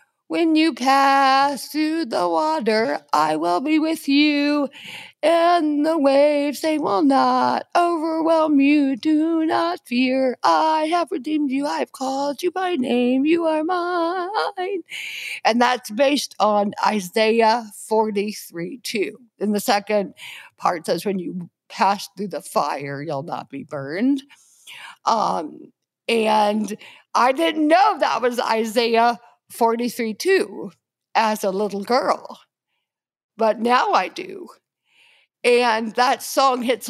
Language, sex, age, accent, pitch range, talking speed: English, female, 50-69, American, 220-300 Hz, 130 wpm